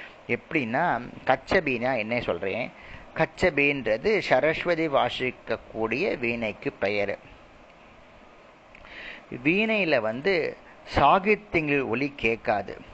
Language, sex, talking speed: Tamil, male, 70 wpm